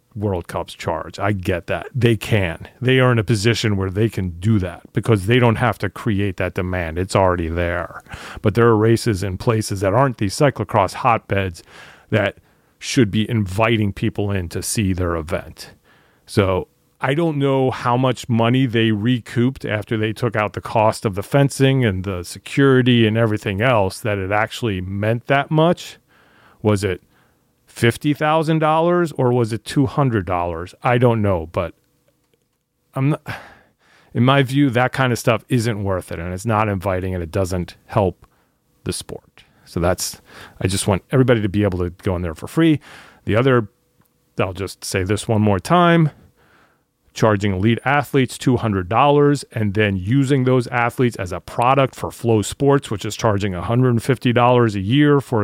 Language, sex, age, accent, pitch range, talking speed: English, male, 40-59, American, 100-130 Hz, 170 wpm